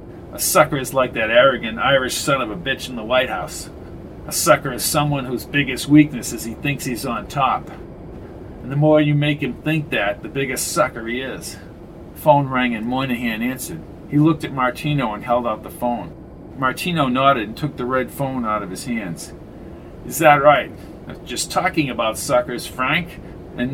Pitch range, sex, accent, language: 130-160 Hz, male, American, English